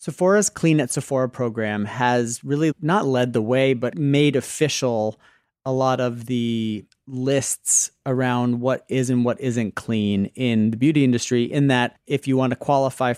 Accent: American